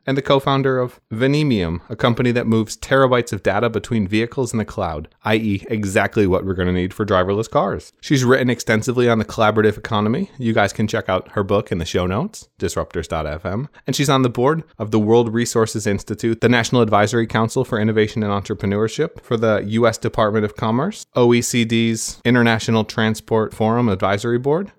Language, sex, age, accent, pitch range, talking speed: English, male, 30-49, American, 100-120 Hz, 185 wpm